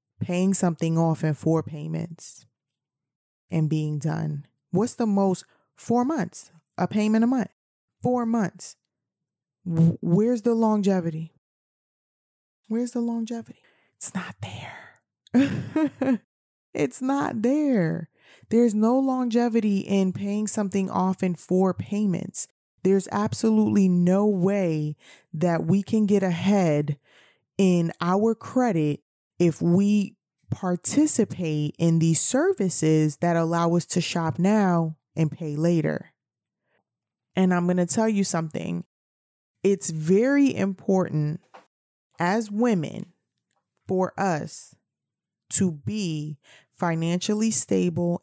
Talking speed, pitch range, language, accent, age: 110 wpm, 160-210 Hz, English, American, 20-39